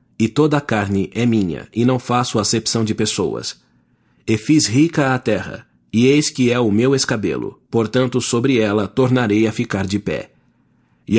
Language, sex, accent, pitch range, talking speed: English, male, Brazilian, 105-130 Hz, 175 wpm